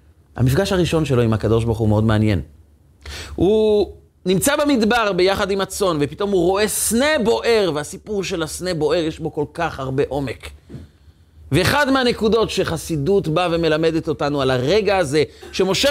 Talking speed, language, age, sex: 150 wpm, Hebrew, 30-49, male